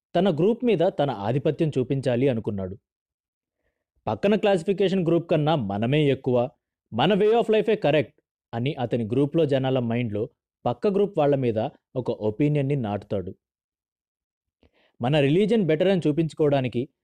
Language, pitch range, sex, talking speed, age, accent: Telugu, 120-175 Hz, male, 125 wpm, 30-49, native